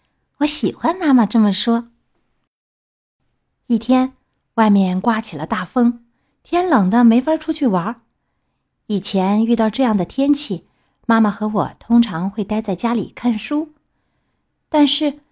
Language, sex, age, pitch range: Chinese, female, 30-49, 200-265 Hz